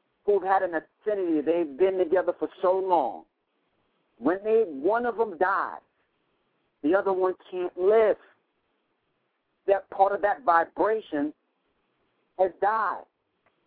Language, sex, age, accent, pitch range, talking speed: English, male, 50-69, American, 180-240 Hz, 125 wpm